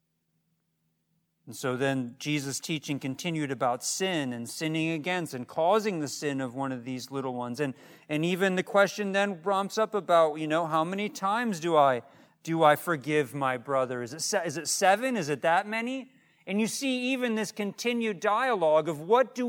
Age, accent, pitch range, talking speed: 40-59, American, 155-210 Hz, 190 wpm